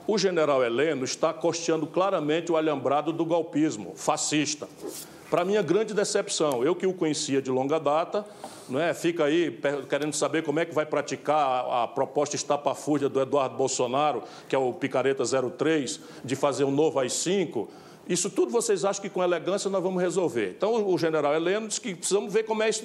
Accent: Brazilian